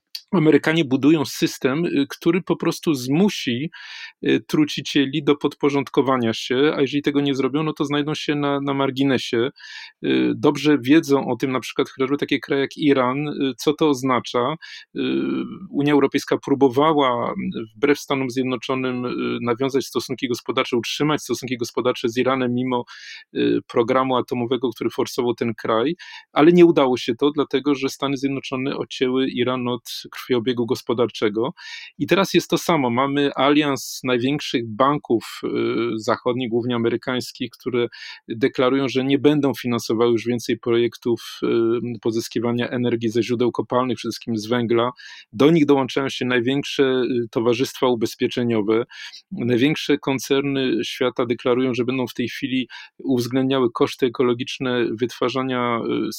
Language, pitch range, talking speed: Polish, 120-145 Hz, 130 wpm